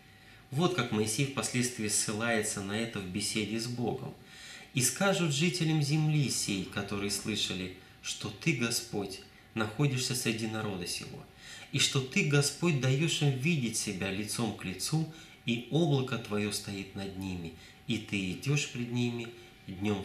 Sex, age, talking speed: male, 20-39, 145 wpm